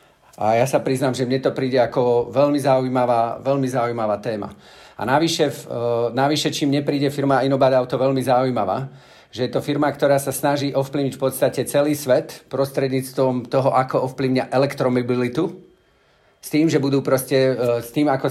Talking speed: 165 wpm